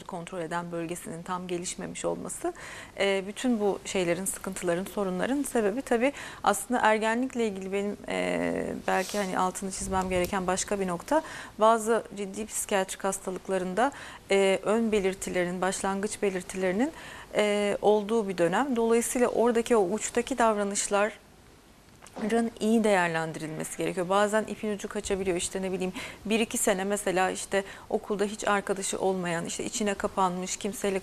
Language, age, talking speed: Turkish, 30-49, 125 wpm